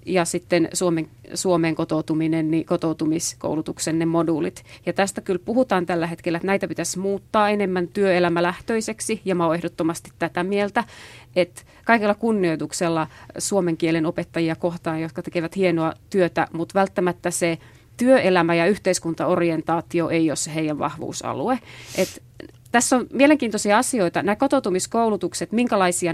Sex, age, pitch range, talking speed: female, 30-49, 165-205 Hz, 130 wpm